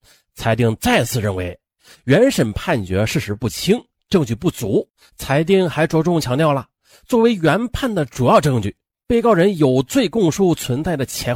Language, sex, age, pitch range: Chinese, male, 30-49, 120-195 Hz